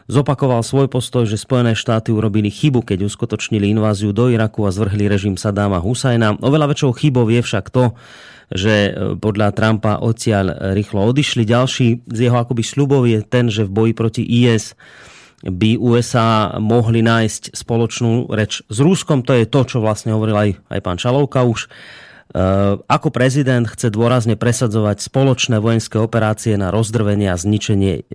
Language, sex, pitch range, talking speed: Slovak, male, 105-120 Hz, 155 wpm